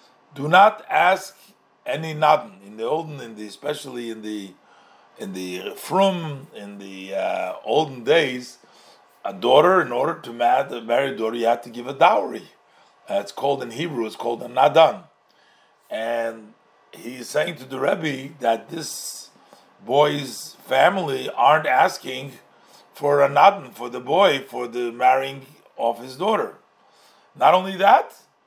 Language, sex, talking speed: English, male, 150 wpm